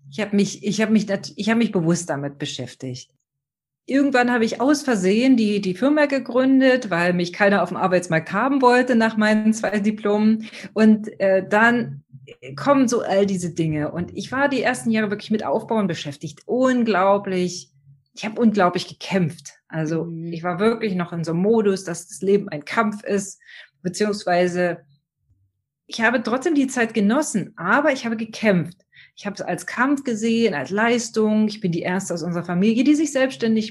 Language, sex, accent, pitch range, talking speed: German, female, German, 175-225 Hz, 180 wpm